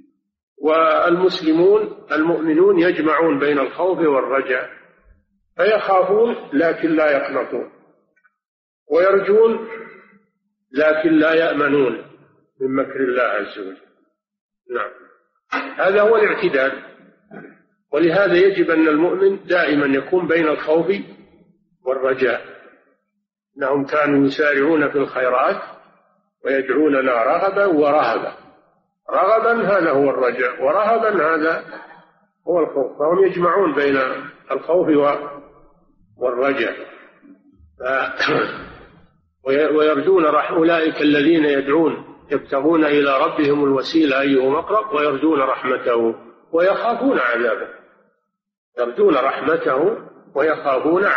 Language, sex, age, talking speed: Arabic, male, 50-69, 80 wpm